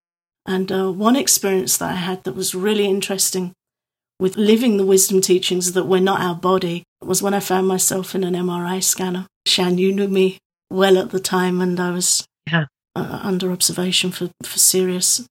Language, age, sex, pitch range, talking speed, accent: English, 40-59, female, 180-200 Hz, 185 wpm, British